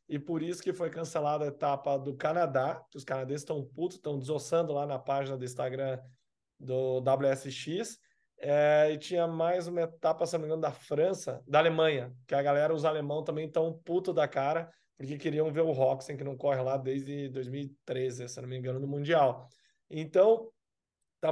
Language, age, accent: Portuguese, 20-39, Brazilian